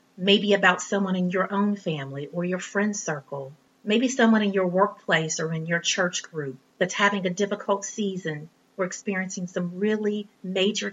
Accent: American